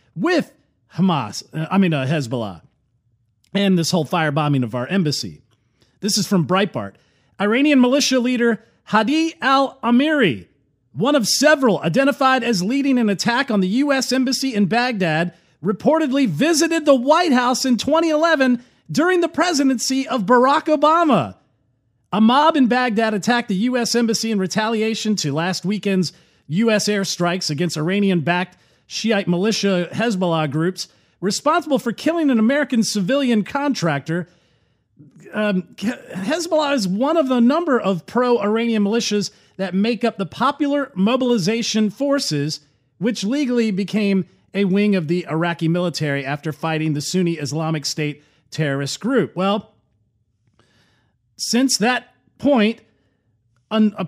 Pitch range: 165-250 Hz